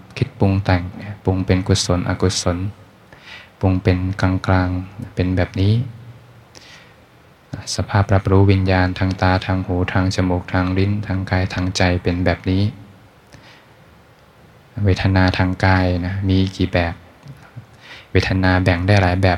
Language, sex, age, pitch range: Thai, male, 20-39, 90-105 Hz